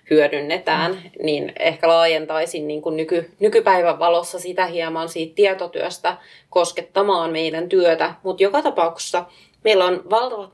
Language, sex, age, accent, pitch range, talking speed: Finnish, female, 30-49, native, 165-200 Hz, 120 wpm